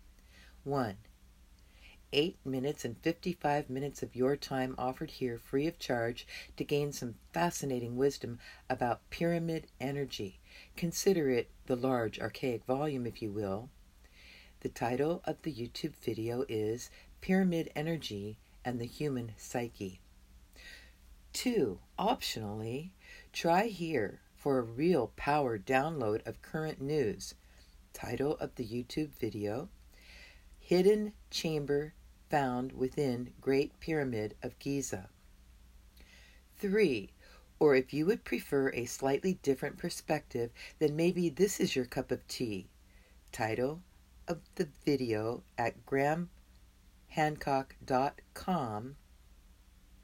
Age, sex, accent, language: 50-69, female, American, English